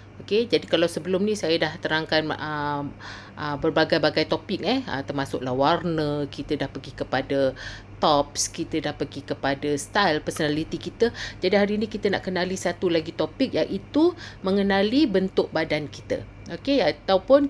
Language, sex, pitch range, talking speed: Malay, female, 155-210 Hz, 150 wpm